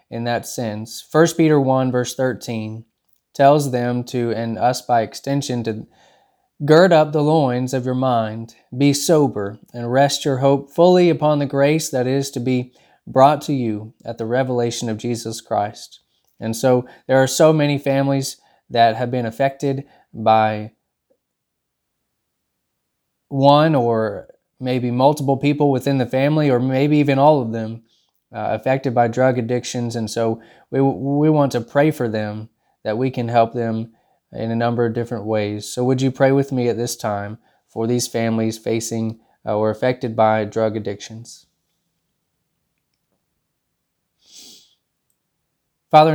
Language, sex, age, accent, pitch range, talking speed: English, male, 20-39, American, 115-140 Hz, 150 wpm